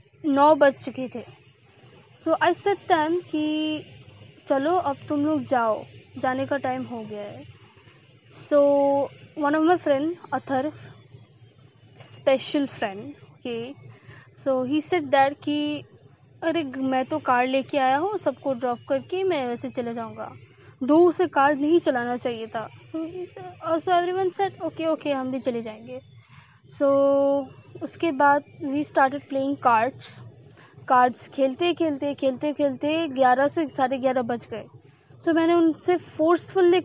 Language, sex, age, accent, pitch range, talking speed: Hindi, female, 20-39, native, 240-315 Hz, 140 wpm